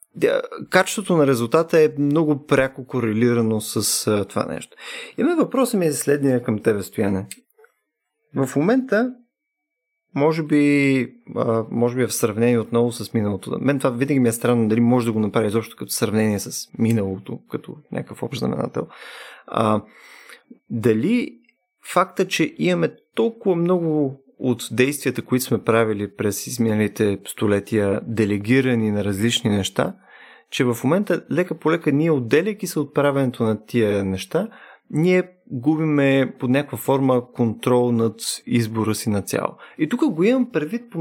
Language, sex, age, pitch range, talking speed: Bulgarian, male, 30-49, 115-165 Hz, 145 wpm